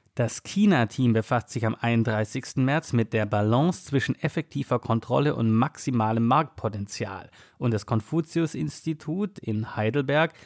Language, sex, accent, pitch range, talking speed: German, male, German, 110-140 Hz, 120 wpm